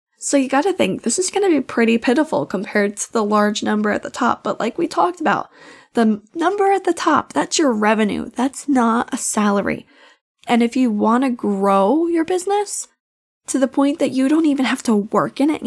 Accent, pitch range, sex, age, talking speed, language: American, 205-265 Hz, female, 10-29, 220 wpm, English